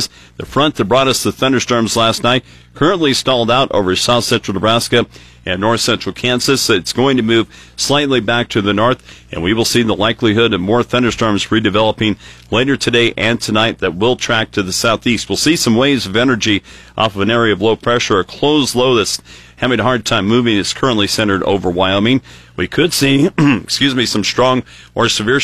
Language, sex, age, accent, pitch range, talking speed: English, male, 50-69, American, 100-120 Hz, 190 wpm